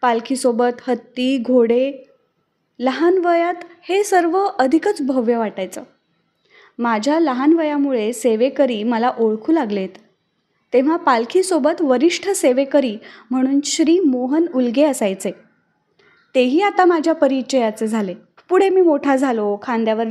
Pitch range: 230-300 Hz